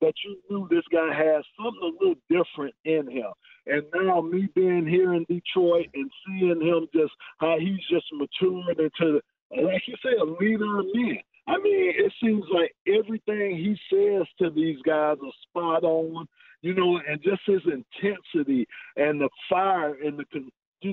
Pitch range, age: 160-205 Hz, 50-69